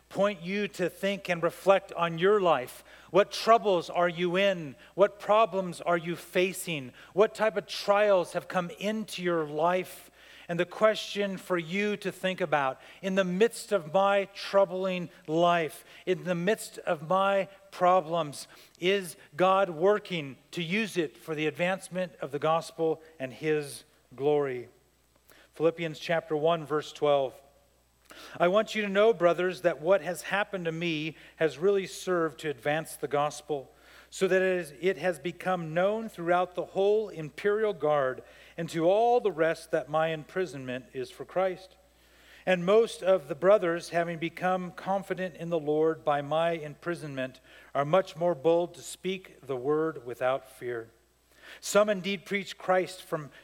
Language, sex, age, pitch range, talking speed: English, male, 40-59, 155-190 Hz, 155 wpm